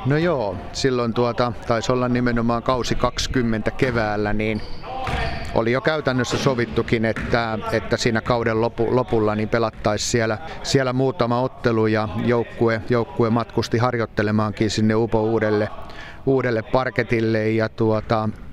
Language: Finnish